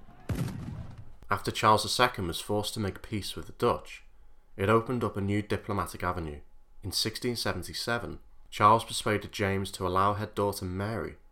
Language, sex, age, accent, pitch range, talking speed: English, male, 30-49, British, 85-105 Hz, 150 wpm